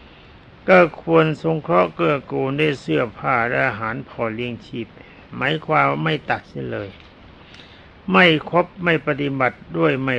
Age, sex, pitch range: 60-79, male, 105-155 Hz